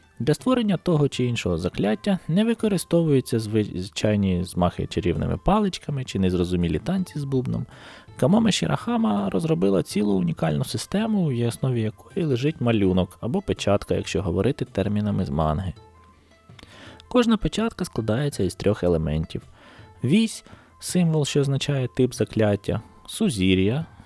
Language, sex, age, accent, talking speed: Ukrainian, male, 20-39, native, 120 wpm